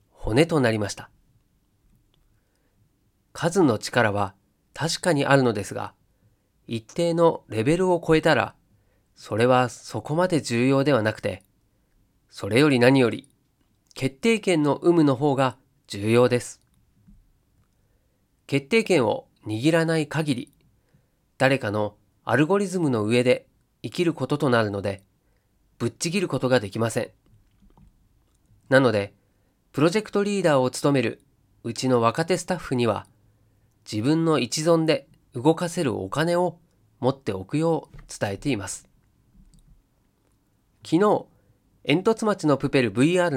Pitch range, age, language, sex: 110-160 Hz, 40-59, Japanese, male